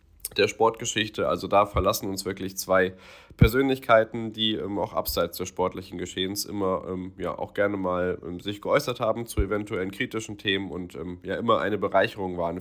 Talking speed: 175 wpm